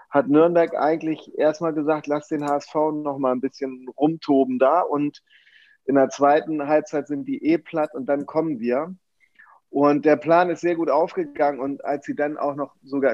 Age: 30-49